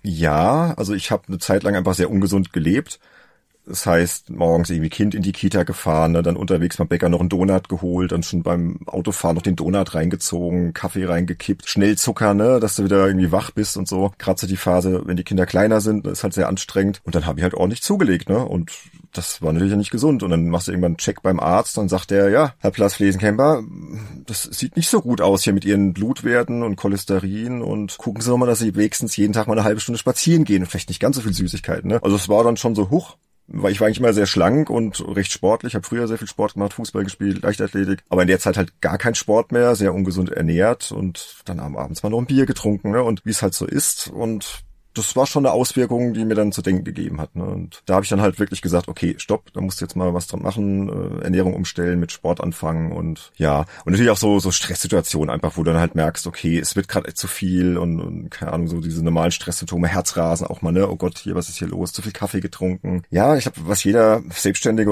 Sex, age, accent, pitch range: male, 40-59, German, 90-105 Hz